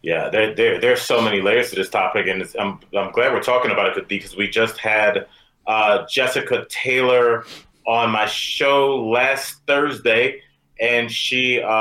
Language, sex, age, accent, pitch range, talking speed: English, male, 30-49, American, 100-125 Hz, 170 wpm